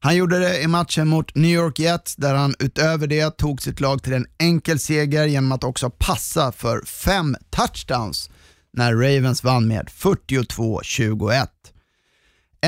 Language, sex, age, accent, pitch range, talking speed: Swedish, male, 30-49, native, 125-155 Hz, 150 wpm